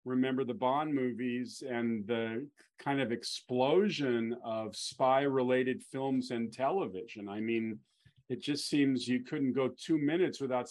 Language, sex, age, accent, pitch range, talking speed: English, male, 40-59, American, 120-155 Hz, 145 wpm